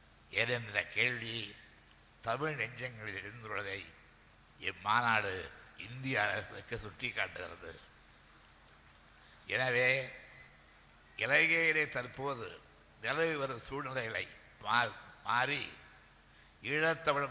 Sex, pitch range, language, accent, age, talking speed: male, 105-135 Hz, Tamil, native, 60-79, 60 wpm